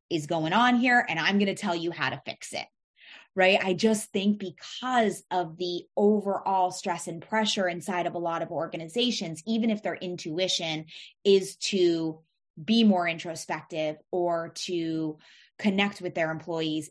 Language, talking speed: English, 165 wpm